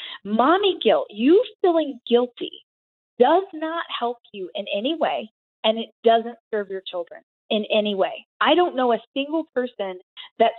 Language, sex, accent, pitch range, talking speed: English, female, American, 195-265 Hz, 160 wpm